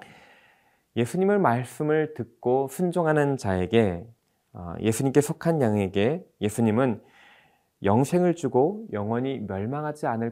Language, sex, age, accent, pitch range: Korean, male, 20-39, native, 95-130 Hz